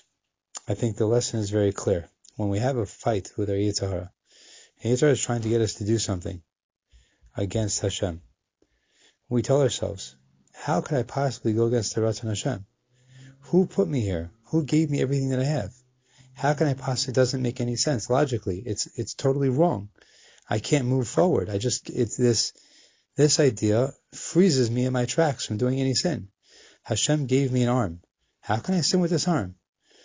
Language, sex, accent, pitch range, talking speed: English, male, American, 105-135 Hz, 185 wpm